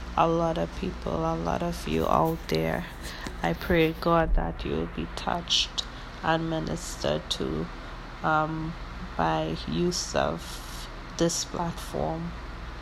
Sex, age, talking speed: female, 20-39, 125 wpm